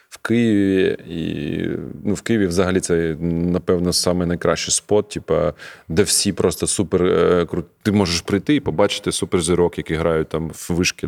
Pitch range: 85-100 Hz